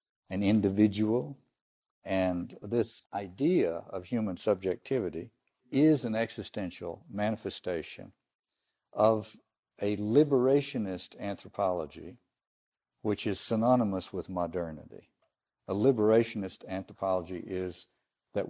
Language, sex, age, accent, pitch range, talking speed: English, male, 60-79, American, 90-115 Hz, 85 wpm